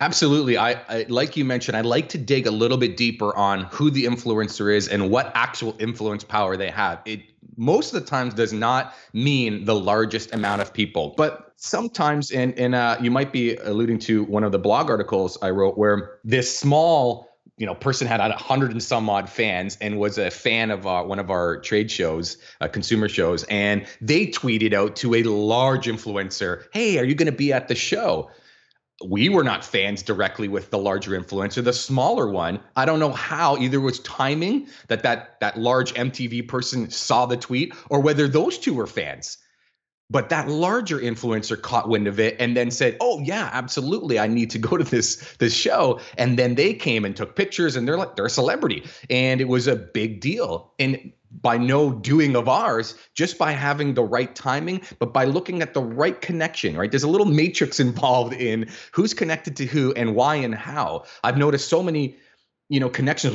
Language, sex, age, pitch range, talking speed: English, male, 30-49, 110-140 Hz, 205 wpm